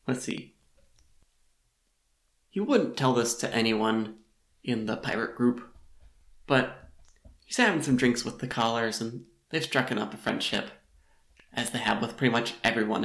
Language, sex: English, male